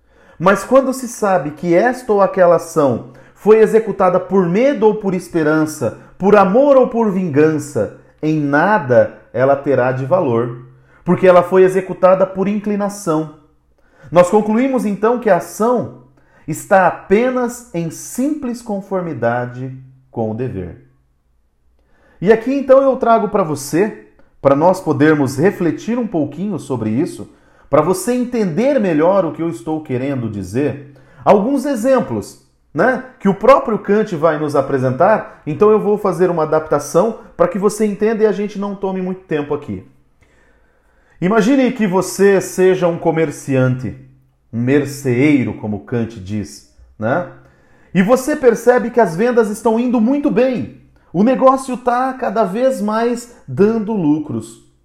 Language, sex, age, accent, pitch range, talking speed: Portuguese, male, 40-59, Brazilian, 140-220 Hz, 140 wpm